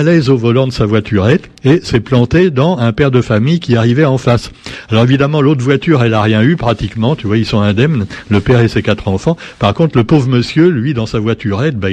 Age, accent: 60-79, French